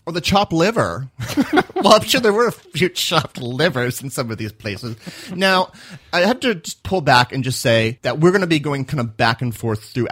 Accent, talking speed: American, 235 wpm